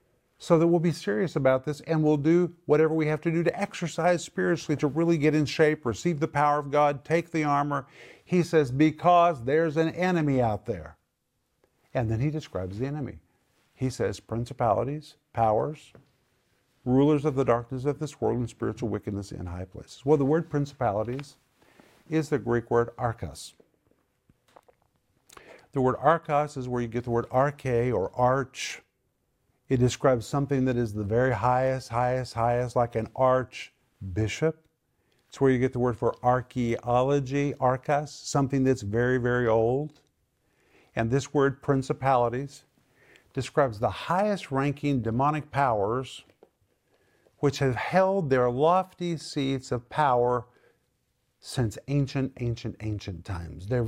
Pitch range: 120-150 Hz